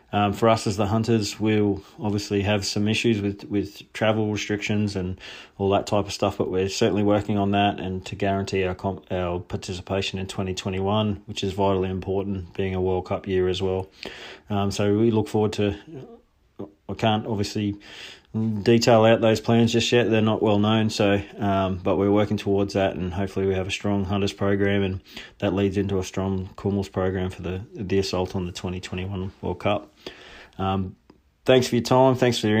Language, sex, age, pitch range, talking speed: English, male, 20-39, 95-105 Hz, 195 wpm